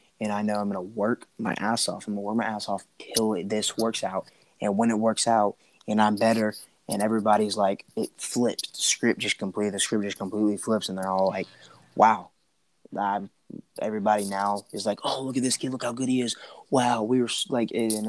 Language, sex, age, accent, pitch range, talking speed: English, male, 20-39, American, 100-110 Hz, 225 wpm